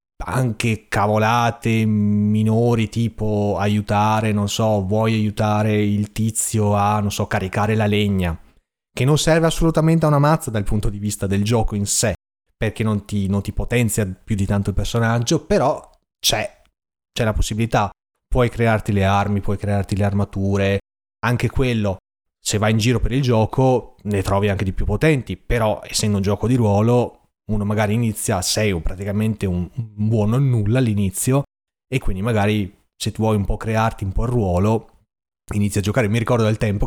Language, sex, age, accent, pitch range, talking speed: Italian, male, 30-49, native, 105-125 Hz, 175 wpm